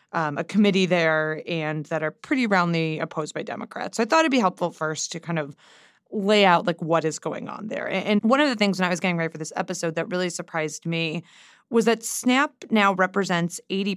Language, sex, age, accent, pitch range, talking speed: English, female, 20-39, American, 165-200 Hz, 230 wpm